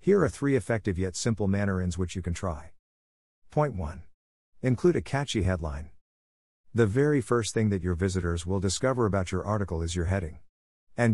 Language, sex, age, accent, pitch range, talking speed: English, male, 50-69, American, 85-115 Hz, 185 wpm